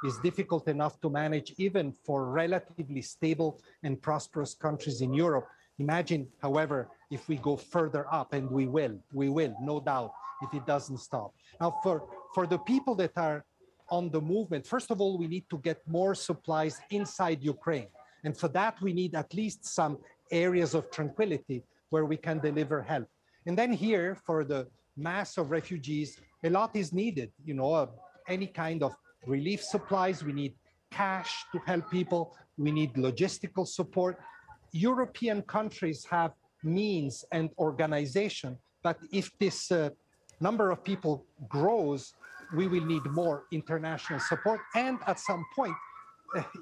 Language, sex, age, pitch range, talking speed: English, male, 40-59, 150-185 Hz, 160 wpm